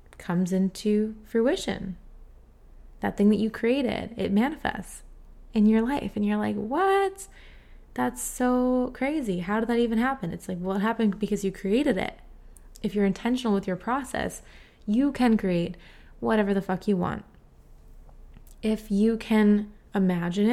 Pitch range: 180-220 Hz